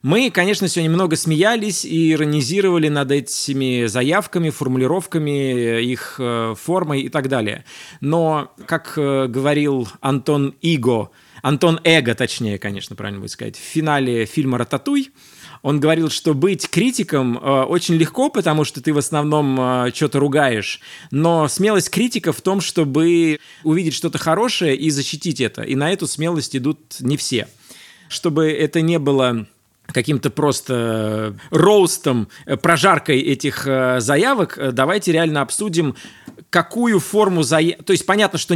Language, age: Russian, 20-39